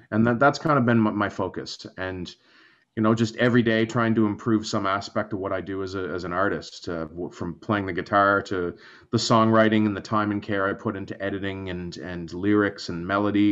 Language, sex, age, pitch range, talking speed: English, male, 30-49, 100-115 Hz, 220 wpm